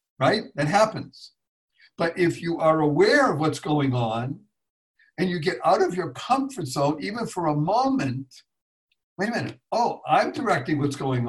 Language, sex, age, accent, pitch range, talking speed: English, male, 60-79, American, 140-185 Hz, 170 wpm